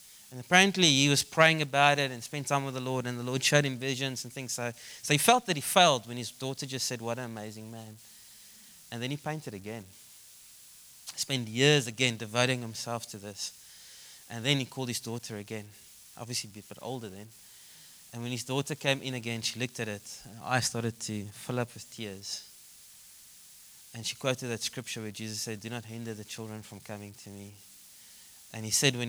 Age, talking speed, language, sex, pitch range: 20-39, 215 wpm, English, male, 110-140 Hz